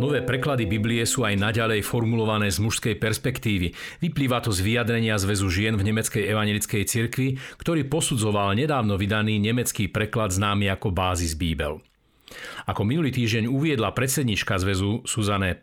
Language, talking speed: Slovak, 140 wpm